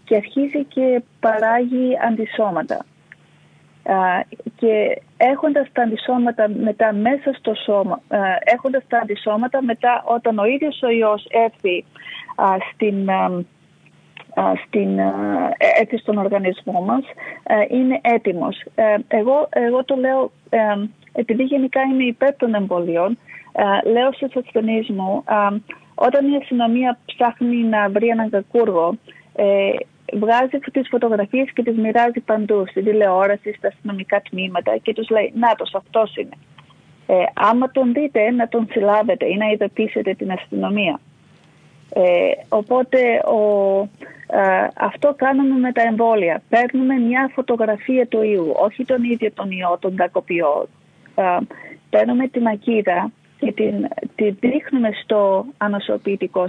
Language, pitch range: Greek, 205-255 Hz